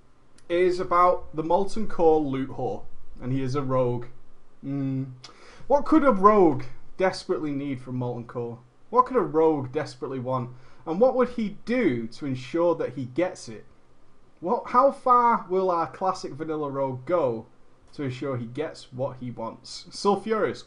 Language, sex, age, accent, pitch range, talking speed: English, male, 30-49, British, 125-190 Hz, 165 wpm